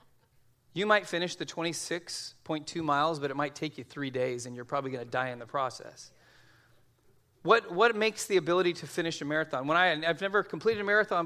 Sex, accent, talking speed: male, American, 205 wpm